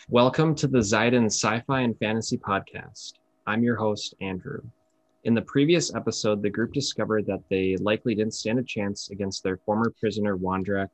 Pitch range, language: 100-125 Hz, English